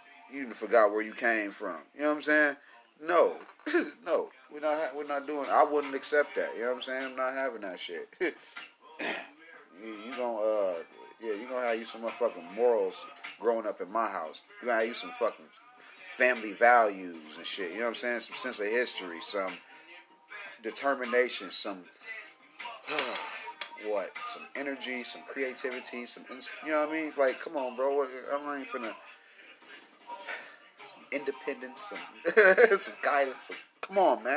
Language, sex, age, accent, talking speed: English, male, 30-49, American, 175 wpm